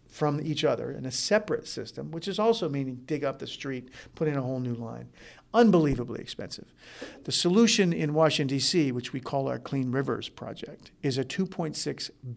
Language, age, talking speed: English, 50-69, 185 wpm